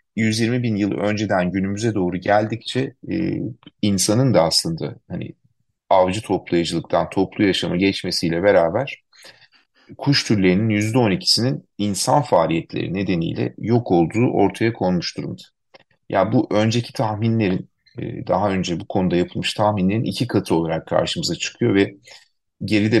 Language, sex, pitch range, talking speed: Turkish, male, 90-115 Hz, 115 wpm